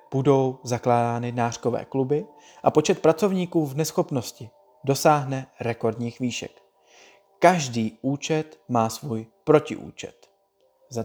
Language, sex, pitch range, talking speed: Czech, male, 120-165 Hz, 100 wpm